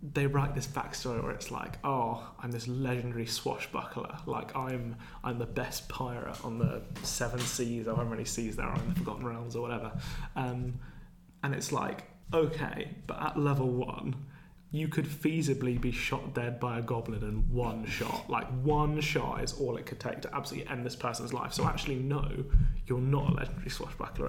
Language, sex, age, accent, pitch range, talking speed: English, male, 20-39, British, 120-150 Hz, 190 wpm